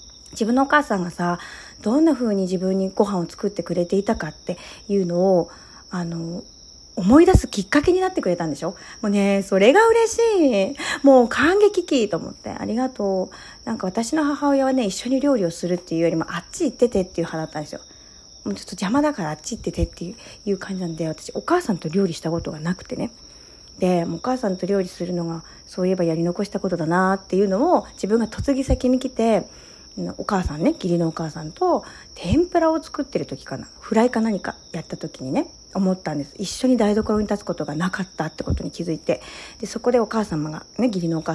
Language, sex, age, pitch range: Japanese, female, 40-59, 175-255 Hz